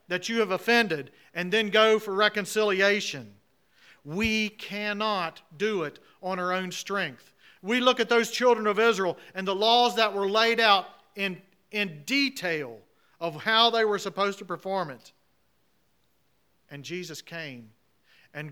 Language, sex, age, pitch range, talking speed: English, male, 40-59, 155-205 Hz, 150 wpm